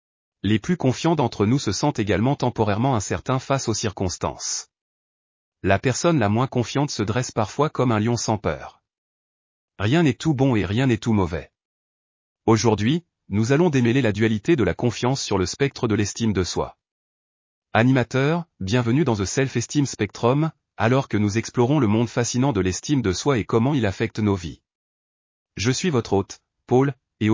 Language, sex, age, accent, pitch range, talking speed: French, male, 30-49, French, 100-135 Hz, 175 wpm